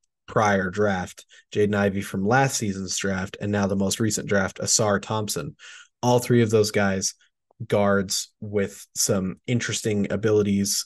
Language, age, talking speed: English, 20-39, 145 wpm